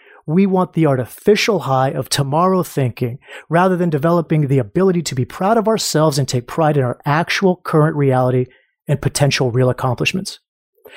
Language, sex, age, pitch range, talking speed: English, male, 30-49, 140-185 Hz, 165 wpm